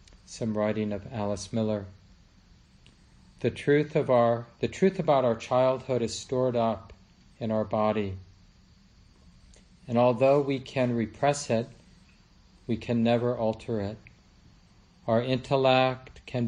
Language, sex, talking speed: English, male, 125 wpm